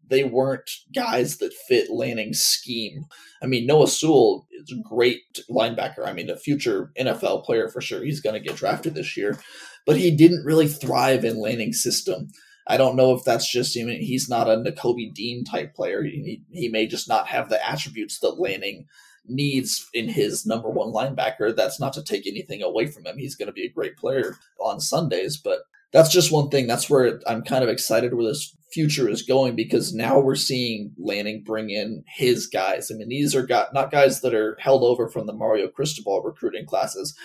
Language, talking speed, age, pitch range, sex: English, 205 wpm, 20-39, 120-175 Hz, male